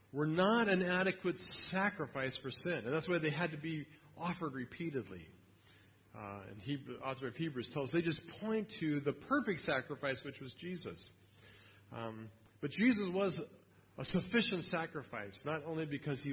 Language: English